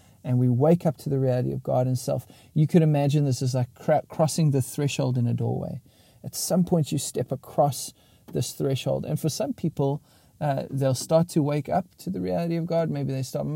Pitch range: 125-150 Hz